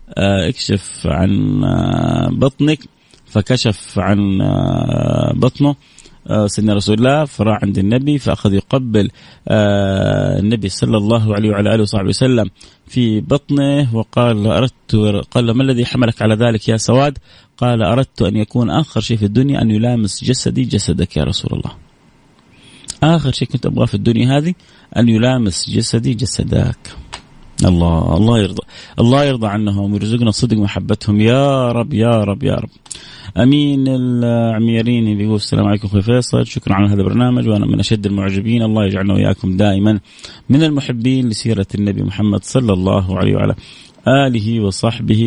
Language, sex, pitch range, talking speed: English, male, 100-125 Hz, 140 wpm